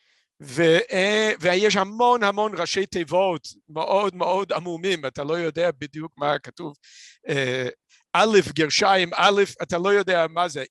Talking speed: 130 wpm